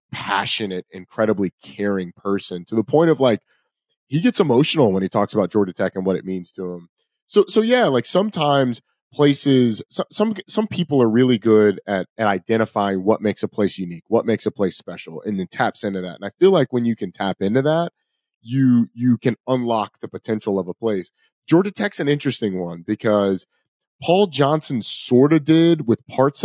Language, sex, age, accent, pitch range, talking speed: English, male, 30-49, American, 100-130 Hz, 195 wpm